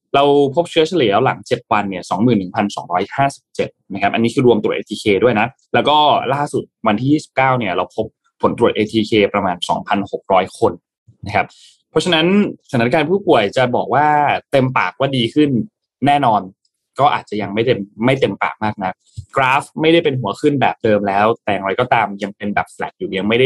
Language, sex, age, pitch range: Thai, male, 20-39, 105-150 Hz